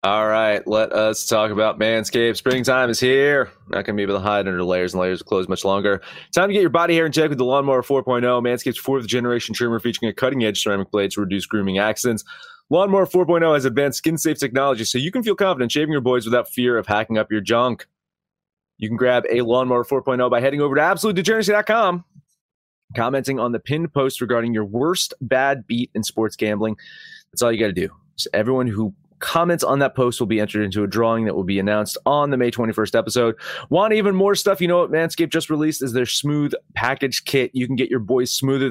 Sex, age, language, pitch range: male, 30-49, English, 110-150 Hz